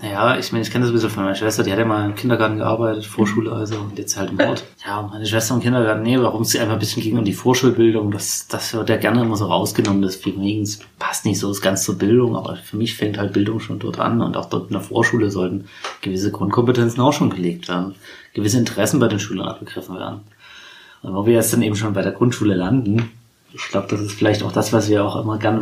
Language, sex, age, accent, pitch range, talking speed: German, male, 30-49, German, 100-120 Hz, 255 wpm